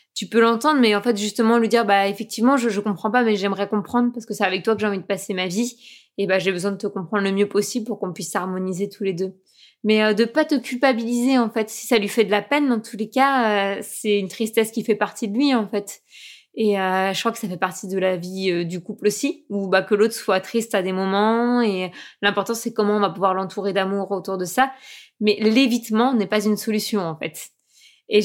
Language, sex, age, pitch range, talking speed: French, female, 20-39, 195-235 Hz, 265 wpm